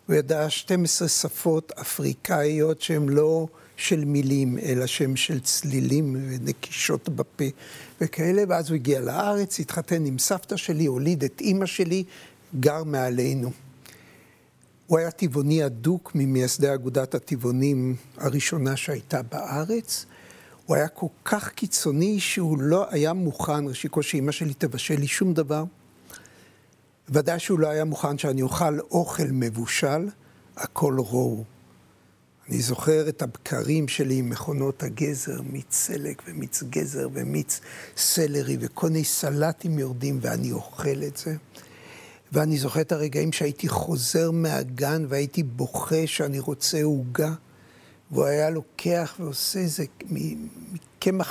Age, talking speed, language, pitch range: 60-79, 125 wpm, Hebrew, 135-165 Hz